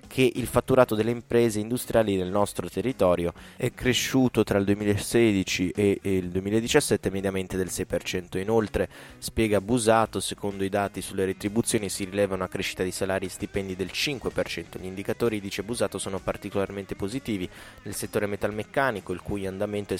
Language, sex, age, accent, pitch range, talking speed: Italian, male, 20-39, native, 95-110 Hz, 155 wpm